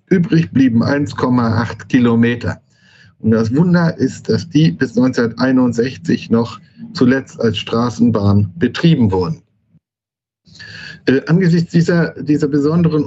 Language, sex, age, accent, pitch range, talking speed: German, male, 10-29, German, 110-145 Hz, 105 wpm